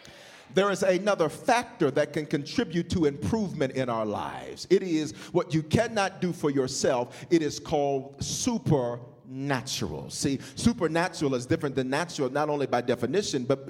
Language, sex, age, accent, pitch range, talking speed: English, male, 40-59, American, 140-180 Hz, 155 wpm